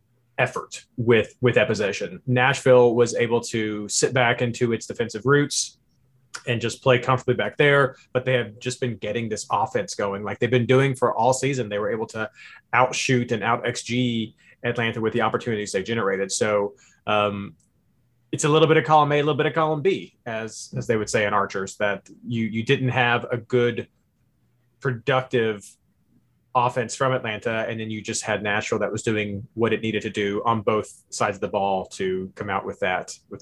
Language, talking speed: English, 195 wpm